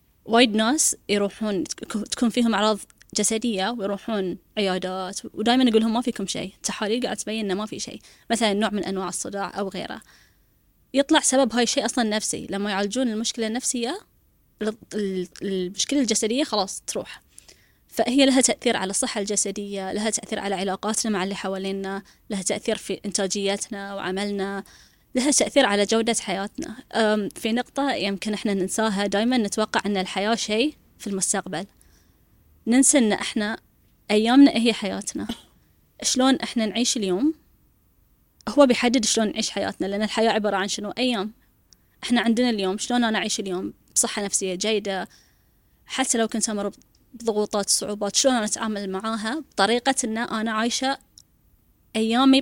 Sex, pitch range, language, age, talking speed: female, 200-240 Hz, Arabic, 20-39, 145 wpm